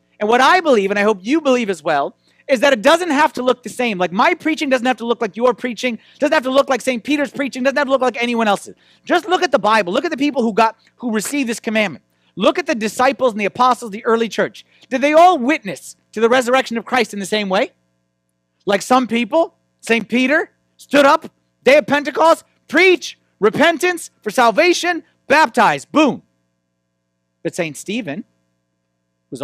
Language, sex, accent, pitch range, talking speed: English, male, American, 170-260 Hz, 210 wpm